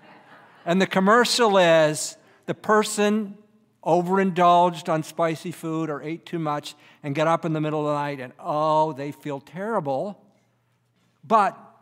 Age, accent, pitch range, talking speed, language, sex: 50-69, American, 140-180 Hz, 145 wpm, English, male